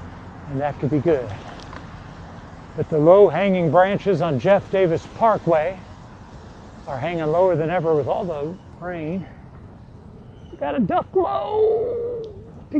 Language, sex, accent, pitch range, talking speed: English, male, American, 120-180 Hz, 130 wpm